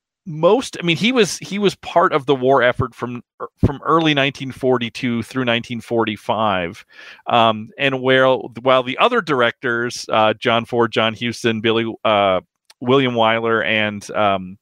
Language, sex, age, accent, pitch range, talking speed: English, male, 40-59, American, 115-135 Hz, 150 wpm